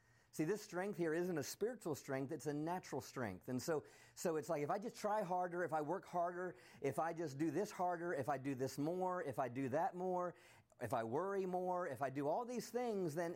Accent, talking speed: American, 240 wpm